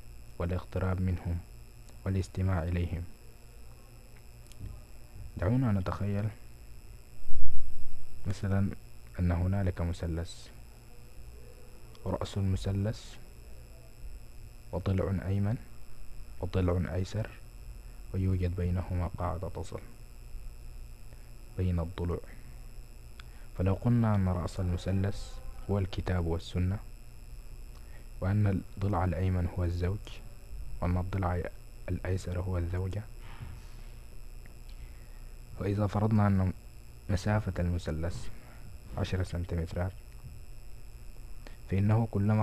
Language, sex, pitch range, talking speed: Arabic, male, 85-100 Hz, 70 wpm